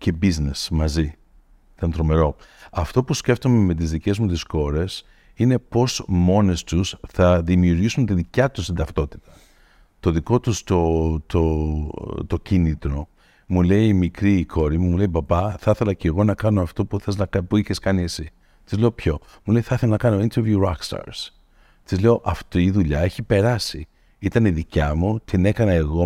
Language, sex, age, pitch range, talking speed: Greek, male, 50-69, 85-110 Hz, 180 wpm